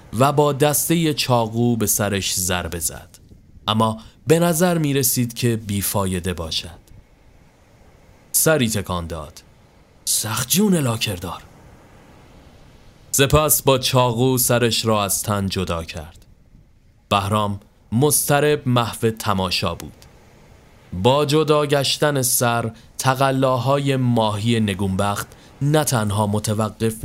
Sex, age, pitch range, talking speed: male, 30-49, 100-130 Hz, 100 wpm